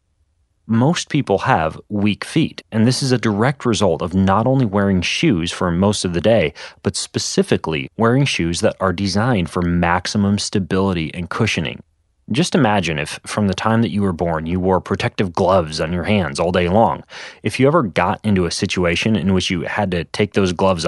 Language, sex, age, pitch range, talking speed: English, male, 30-49, 90-110 Hz, 195 wpm